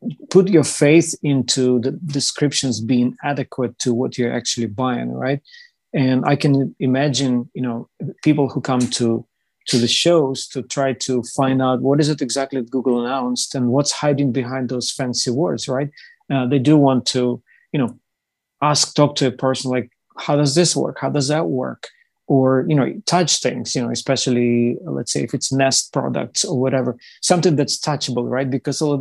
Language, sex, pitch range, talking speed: English, male, 125-140 Hz, 180 wpm